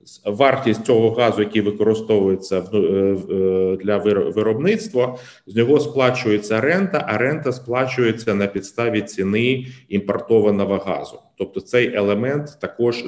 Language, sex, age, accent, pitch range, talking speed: Ukrainian, male, 30-49, native, 100-125 Hz, 105 wpm